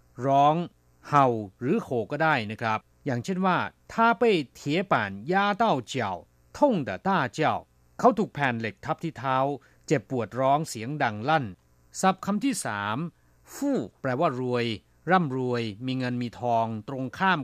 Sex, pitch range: male, 110-160 Hz